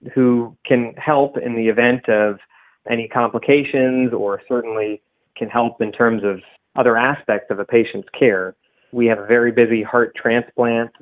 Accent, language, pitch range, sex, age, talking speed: American, English, 110-130 Hz, male, 30-49, 160 wpm